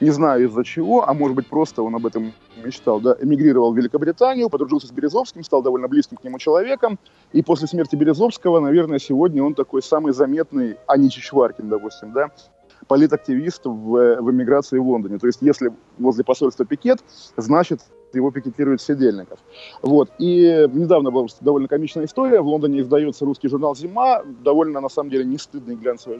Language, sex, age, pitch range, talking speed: Russian, male, 20-39, 130-170 Hz, 175 wpm